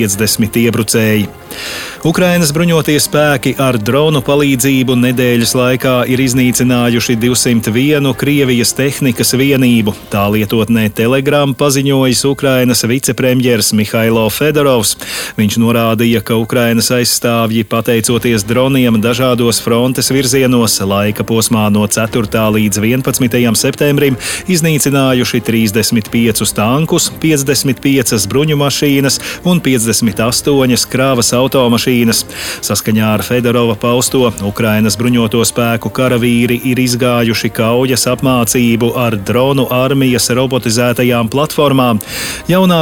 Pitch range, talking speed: 115-135 Hz, 100 wpm